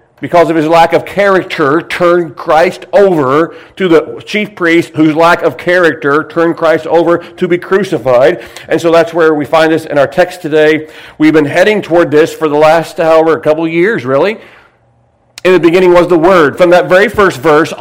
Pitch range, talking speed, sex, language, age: 155-180 Hz, 200 wpm, male, English, 40-59